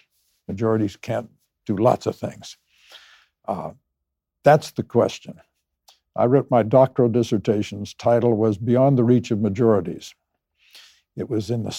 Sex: male